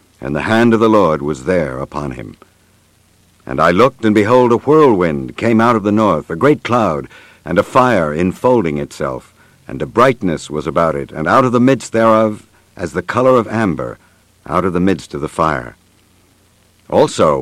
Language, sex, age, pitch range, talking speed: English, male, 60-79, 90-120 Hz, 190 wpm